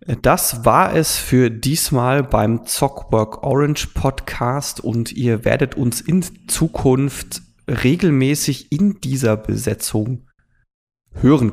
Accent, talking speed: German, 105 wpm